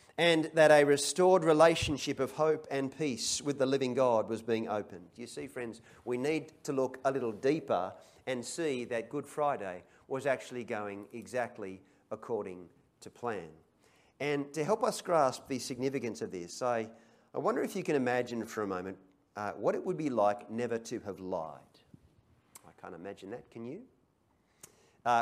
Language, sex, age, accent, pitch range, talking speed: English, male, 40-59, Australian, 125-175 Hz, 175 wpm